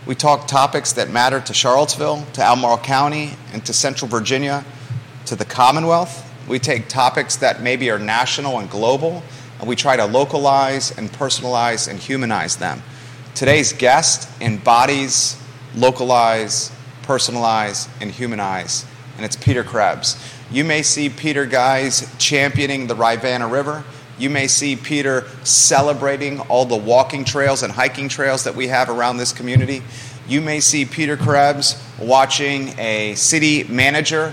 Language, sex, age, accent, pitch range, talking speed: English, male, 30-49, American, 125-140 Hz, 145 wpm